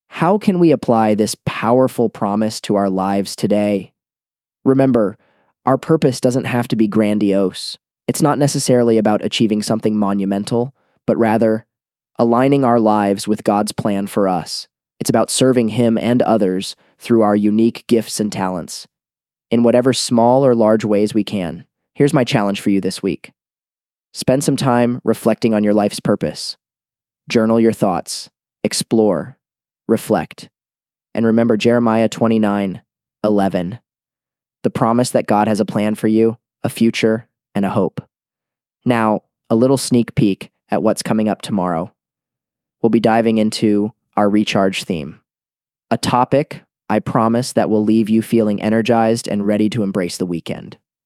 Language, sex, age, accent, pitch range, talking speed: English, male, 20-39, American, 105-120 Hz, 150 wpm